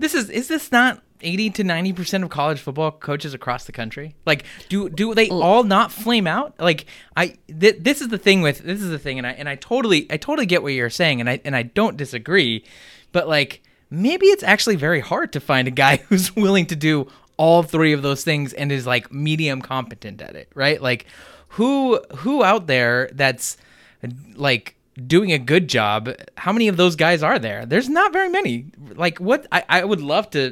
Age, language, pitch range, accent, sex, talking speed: 20-39, English, 125-195 Hz, American, male, 215 wpm